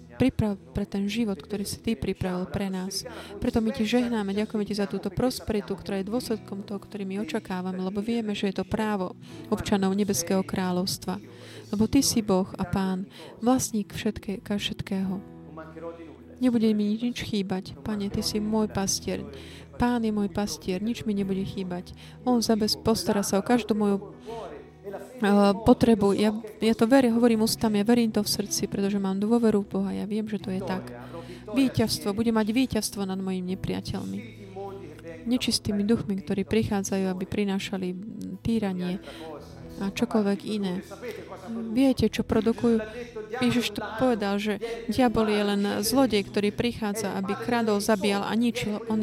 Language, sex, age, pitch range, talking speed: Slovak, female, 30-49, 195-225 Hz, 150 wpm